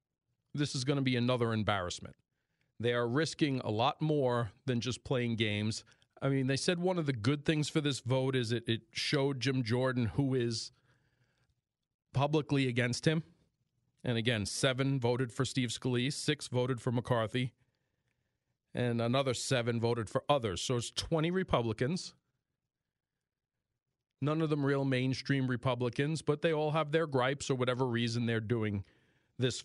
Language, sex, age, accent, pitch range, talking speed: English, male, 40-59, American, 115-140 Hz, 160 wpm